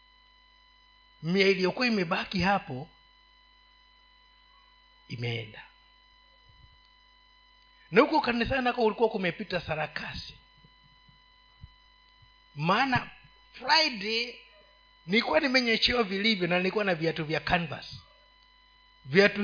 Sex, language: male, Swahili